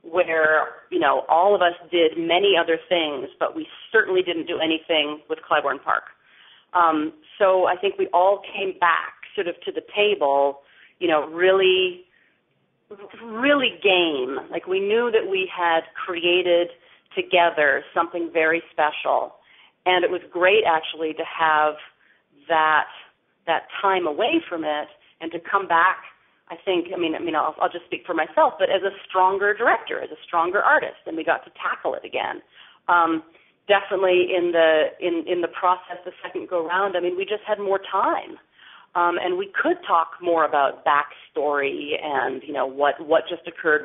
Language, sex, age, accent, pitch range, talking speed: English, female, 40-59, American, 160-195 Hz, 175 wpm